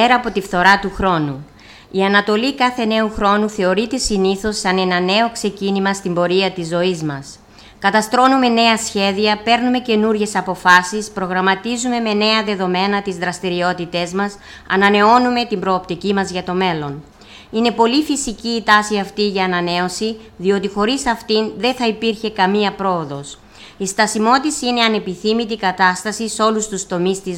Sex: female